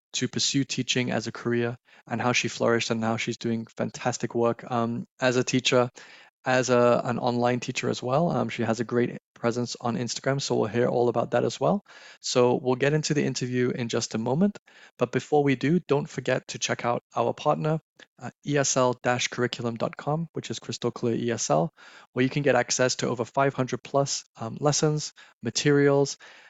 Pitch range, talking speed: 120-145 Hz, 185 wpm